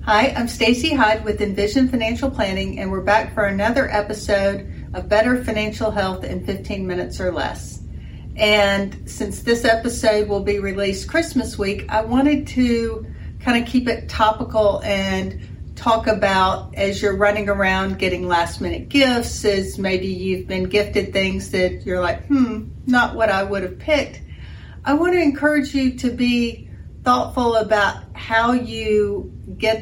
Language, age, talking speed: English, 40-59, 160 wpm